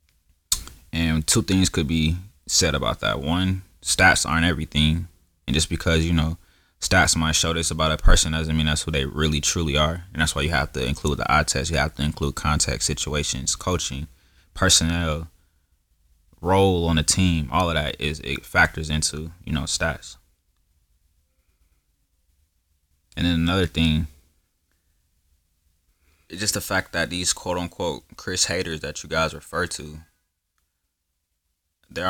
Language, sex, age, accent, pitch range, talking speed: English, male, 20-39, American, 75-80 Hz, 155 wpm